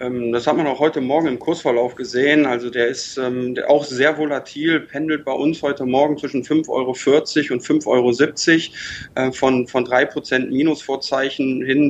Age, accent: 20-39, German